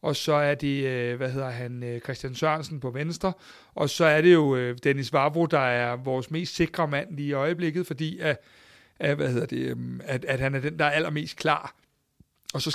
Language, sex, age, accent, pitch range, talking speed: Danish, male, 60-79, native, 140-165 Hz, 205 wpm